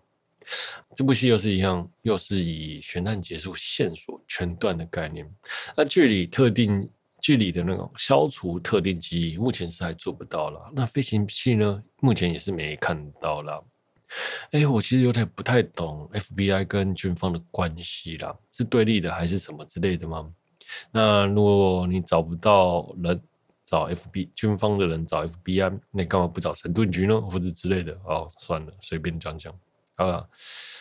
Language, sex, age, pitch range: Chinese, male, 20-39, 85-105 Hz